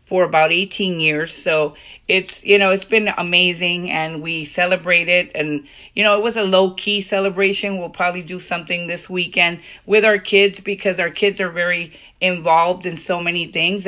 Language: English